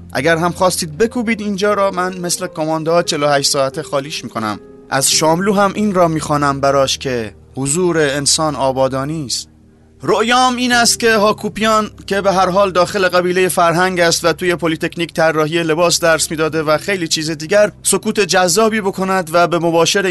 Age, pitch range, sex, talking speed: 30-49, 155-195 Hz, male, 170 wpm